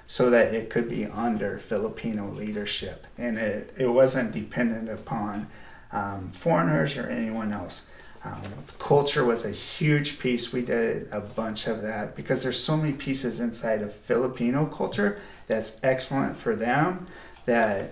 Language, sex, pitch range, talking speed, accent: English, male, 105-125 Hz, 150 wpm, American